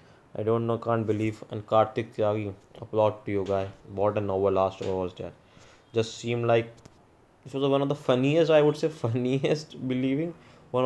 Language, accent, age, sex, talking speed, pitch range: English, Indian, 20-39, male, 190 wpm, 105-120 Hz